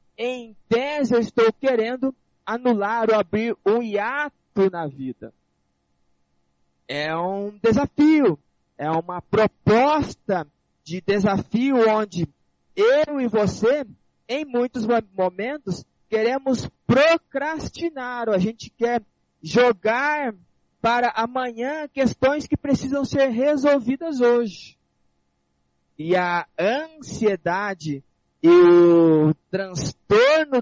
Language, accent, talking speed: Portuguese, Brazilian, 90 wpm